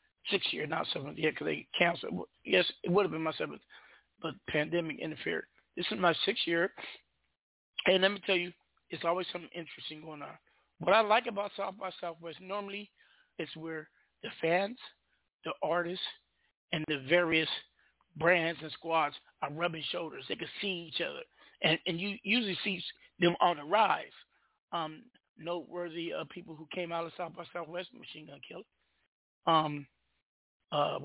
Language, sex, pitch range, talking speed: English, male, 165-195 Hz, 170 wpm